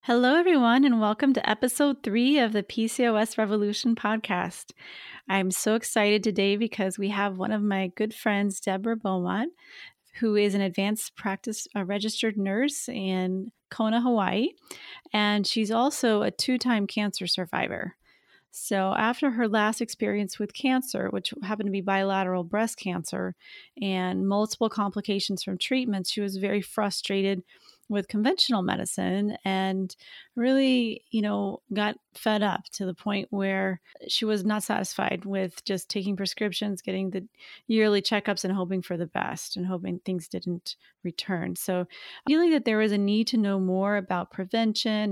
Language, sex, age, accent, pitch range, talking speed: English, female, 30-49, American, 190-225 Hz, 155 wpm